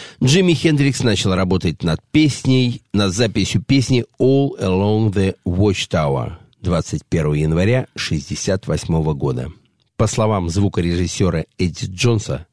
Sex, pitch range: male, 90-120 Hz